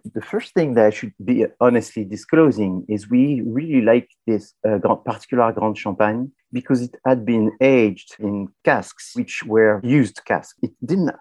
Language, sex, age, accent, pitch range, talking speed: English, male, 50-69, French, 110-135 Hz, 165 wpm